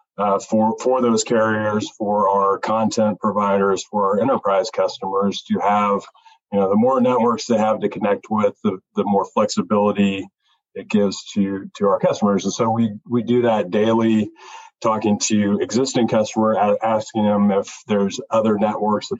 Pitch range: 100-115 Hz